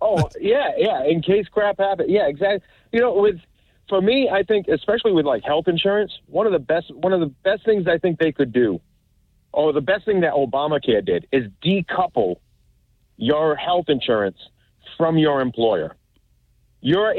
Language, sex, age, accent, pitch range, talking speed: English, male, 40-59, American, 120-180 Hz, 180 wpm